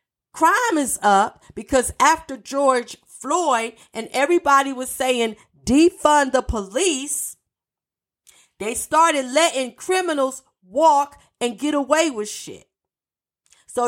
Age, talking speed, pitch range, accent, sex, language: 40-59, 110 wpm, 255-305 Hz, American, female, English